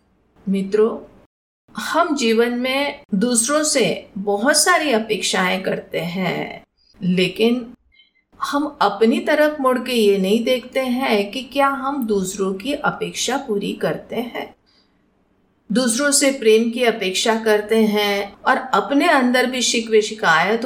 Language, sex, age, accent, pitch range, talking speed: Hindi, female, 50-69, native, 200-260 Hz, 120 wpm